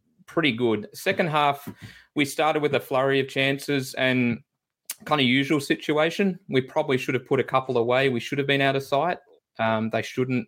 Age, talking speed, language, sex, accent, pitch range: 20-39, 195 wpm, English, male, Australian, 115-140 Hz